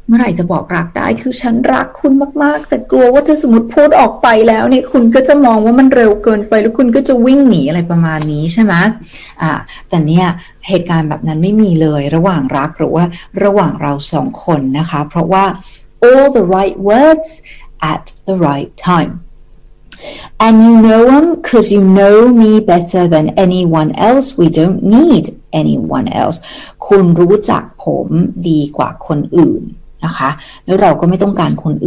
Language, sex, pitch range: Thai, female, 165-235 Hz